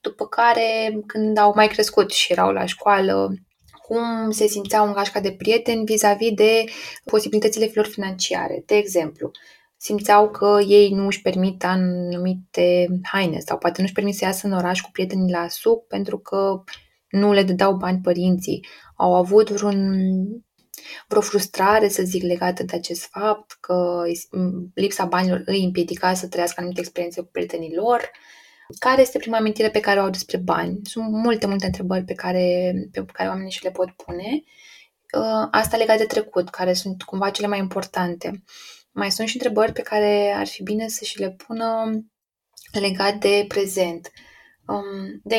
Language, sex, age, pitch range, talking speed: Romanian, female, 20-39, 180-215 Hz, 165 wpm